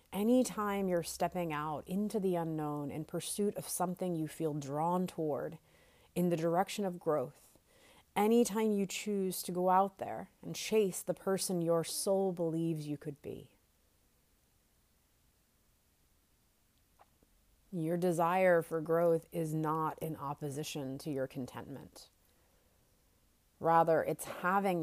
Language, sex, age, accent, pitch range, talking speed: English, female, 30-49, American, 155-190 Hz, 130 wpm